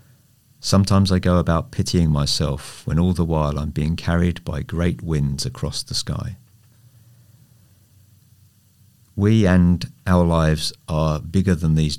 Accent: British